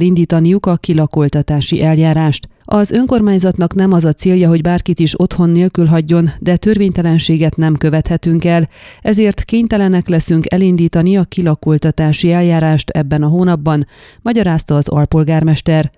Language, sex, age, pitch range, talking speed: Hungarian, female, 30-49, 160-185 Hz, 130 wpm